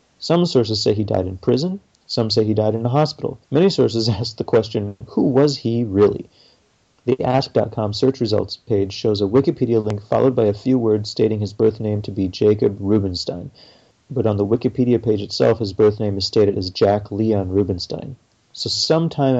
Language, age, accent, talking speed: English, 30-49, American, 190 wpm